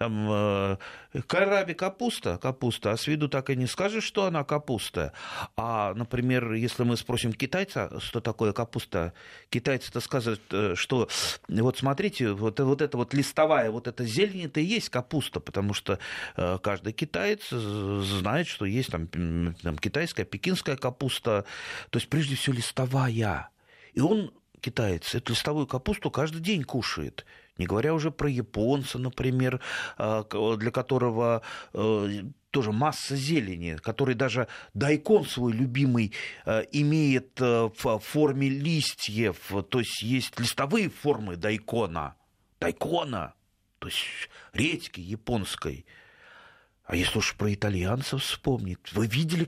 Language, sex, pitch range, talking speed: Russian, male, 110-150 Hz, 130 wpm